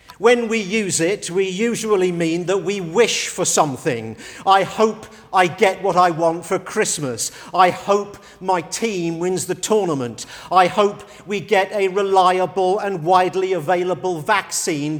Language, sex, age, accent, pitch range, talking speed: English, male, 50-69, British, 165-205 Hz, 150 wpm